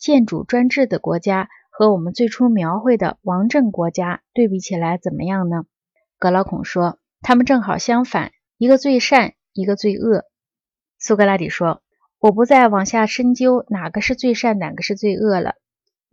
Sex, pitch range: female, 190-245 Hz